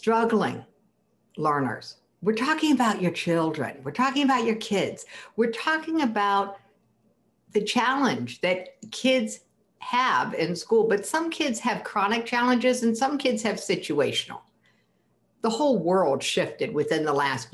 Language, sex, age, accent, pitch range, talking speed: English, female, 60-79, American, 165-230 Hz, 135 wpm